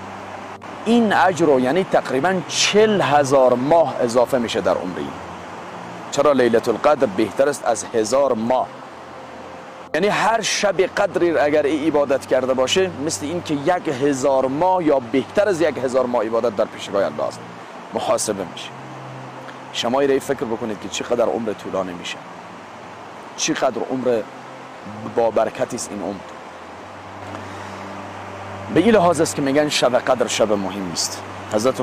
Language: English